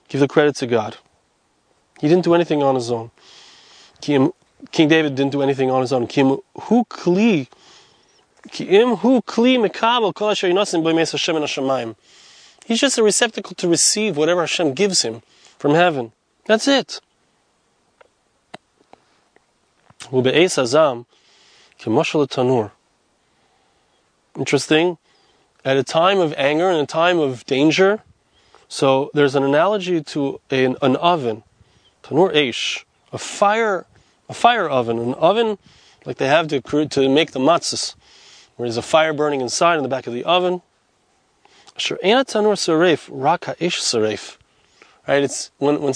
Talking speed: 110 wpm